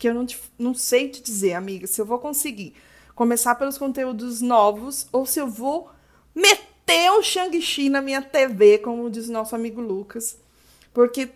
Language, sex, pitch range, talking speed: Portuguese, female, 220-275 Hz, 175 wpm